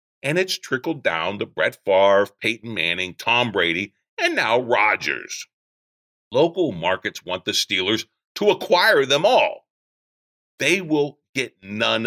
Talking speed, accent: 135 wpm, American